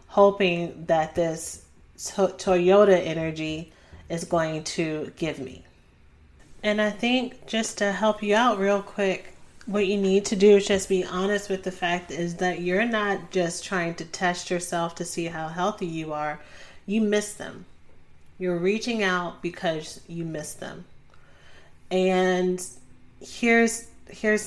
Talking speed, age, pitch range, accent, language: 145 wpm, 30-49, 160-195 Hz, American, English